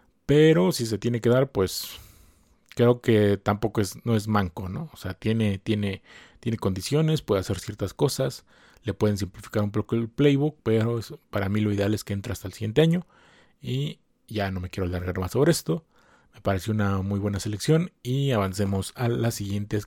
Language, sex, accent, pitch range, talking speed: Spanish, male, Mexican, 95-120 Hz, 195 wpm